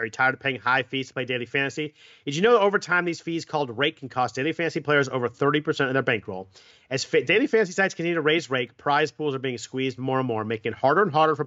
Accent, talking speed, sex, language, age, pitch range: American, 275 wpm, male, English, 40-59, 125-155 Hz